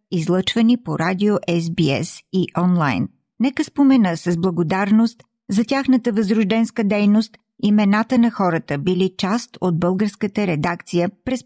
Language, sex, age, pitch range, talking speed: Bulgarian, female, 50-69, 180-230 Hz, 120 wpm